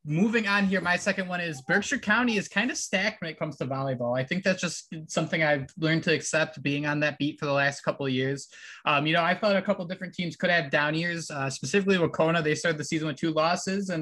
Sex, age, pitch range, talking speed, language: male, 20-39, 140-170 Hz, 270 wpm, English